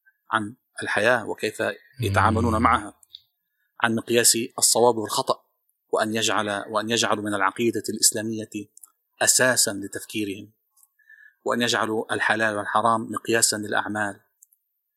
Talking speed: 90 wpm